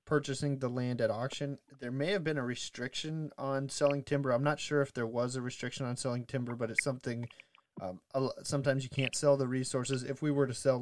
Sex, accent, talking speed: male, American, 220 wpm